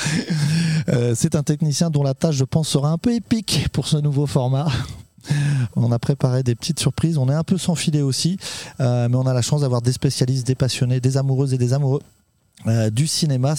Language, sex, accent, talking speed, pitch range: French, male, French, 215 wpm, 125-160 Hz